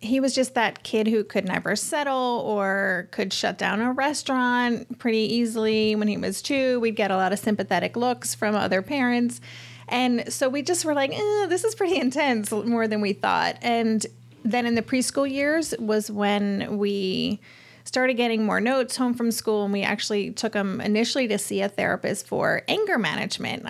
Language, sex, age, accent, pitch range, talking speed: English, female, 30-49, American, 205-250 Hz, 185 wpm